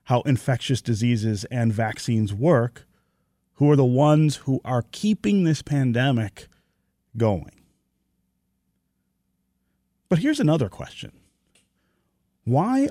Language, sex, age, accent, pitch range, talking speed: English, male, 30-49, American, 105-155 Hz, 100 wpm